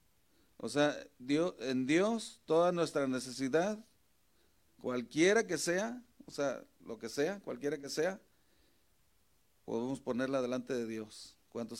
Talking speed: 120 wpm